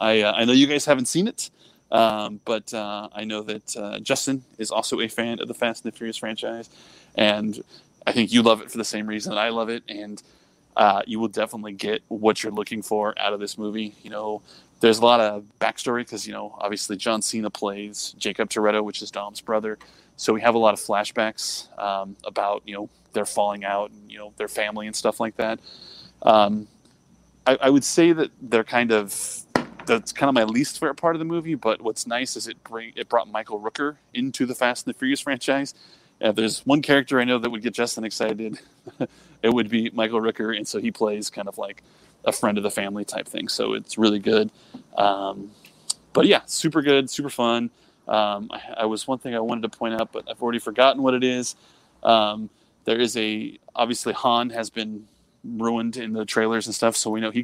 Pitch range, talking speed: 105-120 Hz, 220 wpm